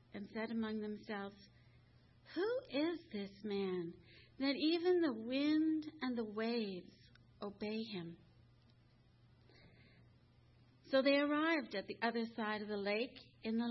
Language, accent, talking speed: English, American, 125 wpm